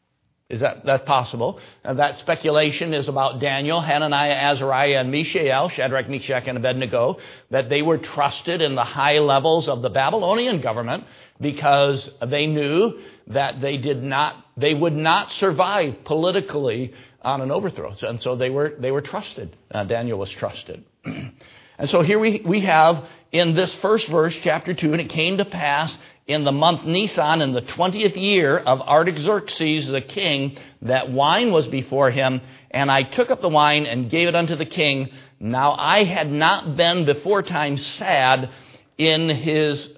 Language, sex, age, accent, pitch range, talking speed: English, male, 60-79, American, 135-165 Hz, 170 wpm